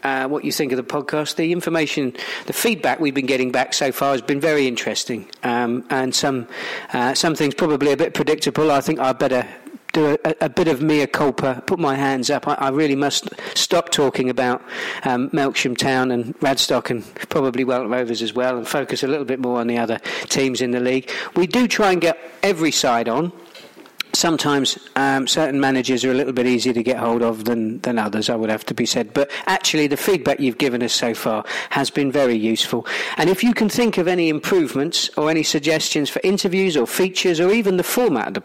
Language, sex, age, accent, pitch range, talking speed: English, male, 40-59, British, 130-160 Hz, 220 wpm